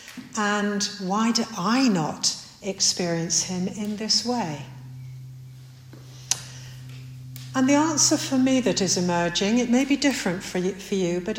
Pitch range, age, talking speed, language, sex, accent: 145-215 Hz, 60-79, 125 wpm, English, female, British